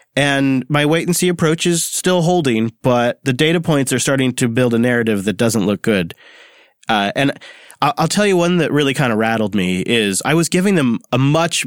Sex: male